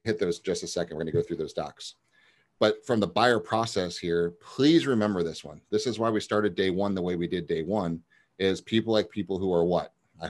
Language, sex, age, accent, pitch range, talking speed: English, male, 40-59, American, 80-95 Hz, 250 wpm